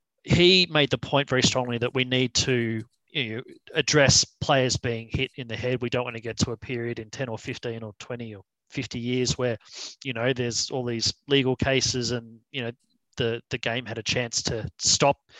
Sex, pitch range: male, 115-135 Hz